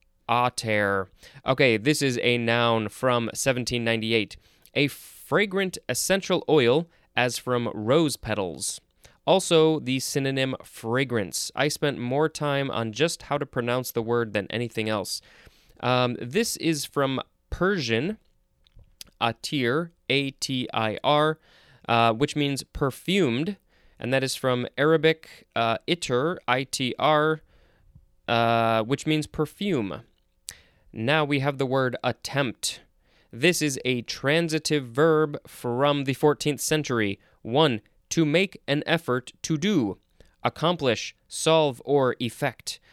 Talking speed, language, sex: 115 wpm, English, male